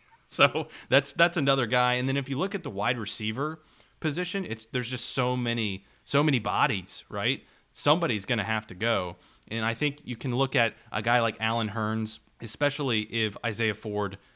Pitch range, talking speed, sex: 105-125 Hz, 190 wpm, male